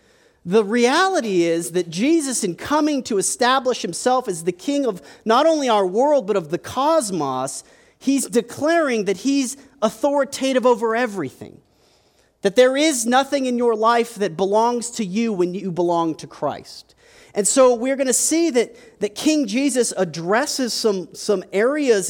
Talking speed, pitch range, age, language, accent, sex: 155 wpm, 180-255 Hz, 40-59, English, American, male